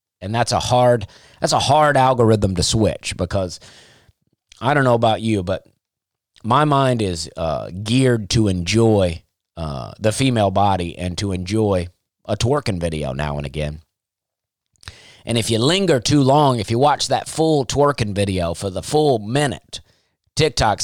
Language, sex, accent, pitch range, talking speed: English, male, American, 95-125 Hz, 160 wpm